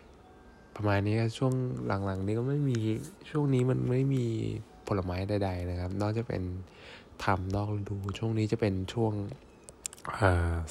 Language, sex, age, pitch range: Thai, male, 20-39, 95-115 Hz